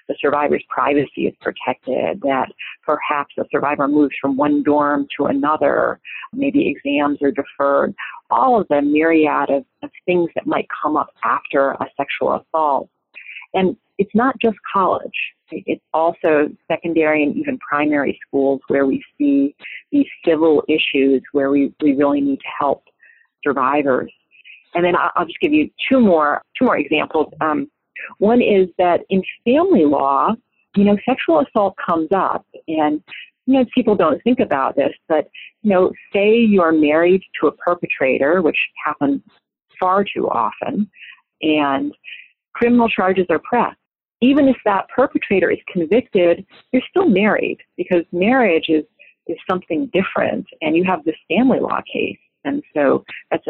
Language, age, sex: English, 40-59, female